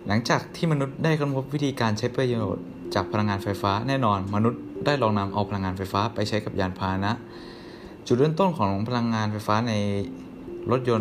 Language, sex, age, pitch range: Thai, male, 20-39, 100-125 Hz